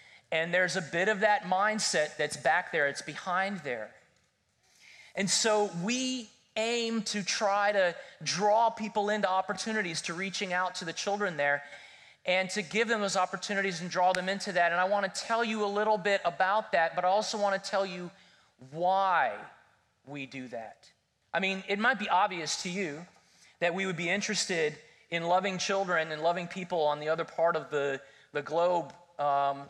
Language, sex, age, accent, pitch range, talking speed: English, male, 30-49, American, 150-195 Hz, 180 wpm